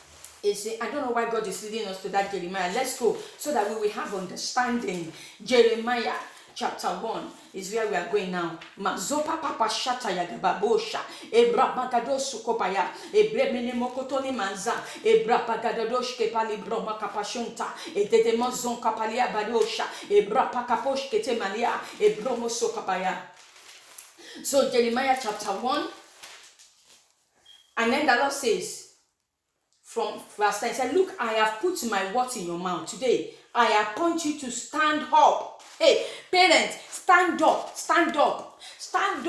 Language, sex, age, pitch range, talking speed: English, female, 40-59, 225-325 Hz, 95 wpm